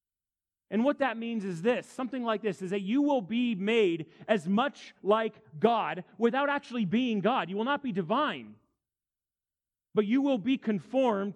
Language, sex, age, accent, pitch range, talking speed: English, male, 30-49, American, 155-215 Hz, 175 wpm